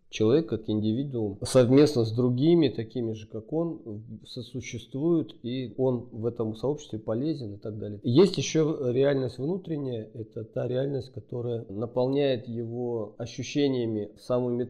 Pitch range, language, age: 110-140 Hz, Russian, 40-59